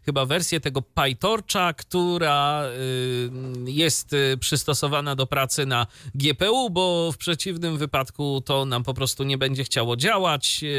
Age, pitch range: 30-49, 130-170 Hz